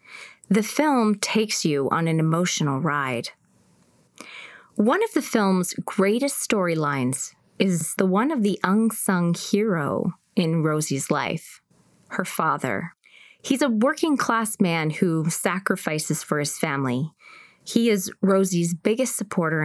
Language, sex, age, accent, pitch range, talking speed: English, female, 30-49, American, 165-215 Hz, 125 wpm